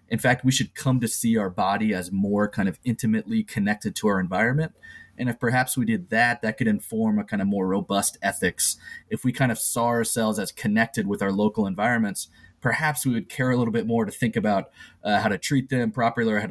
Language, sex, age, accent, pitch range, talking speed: English, male, 20-39, American, 95-130 Hz, 235 wpm